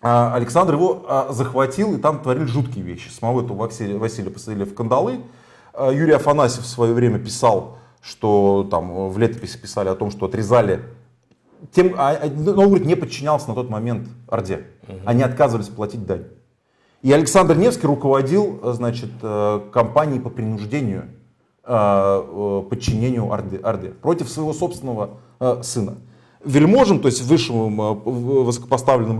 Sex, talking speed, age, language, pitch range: male, 130 wpm, 30-49, Russian, 115-155 Hz